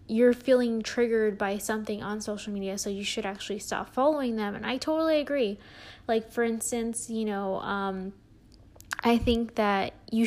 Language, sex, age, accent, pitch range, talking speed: English, female, 10-29, American, 205-235 Hz, 170 wpm